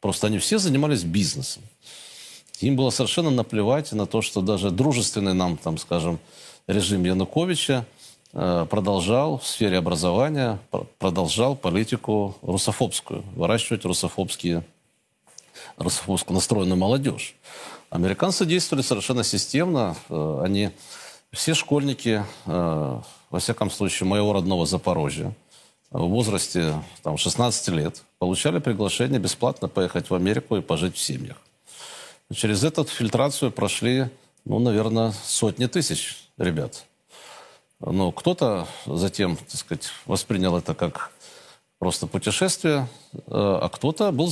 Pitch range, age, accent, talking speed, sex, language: 95-130 Hz, 40-59, native, 105 wpm, male, Russian